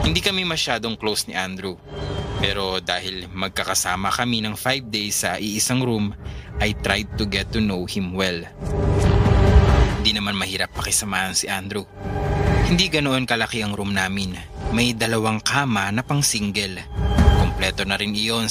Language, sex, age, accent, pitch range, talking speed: English, male, 20-39, Filipino, 95-115 Hz, 150 wpm